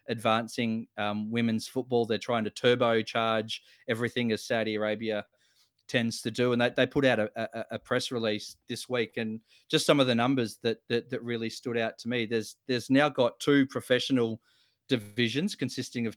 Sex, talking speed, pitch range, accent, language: male, 185 wpm, 110-125 Hz, Australian, English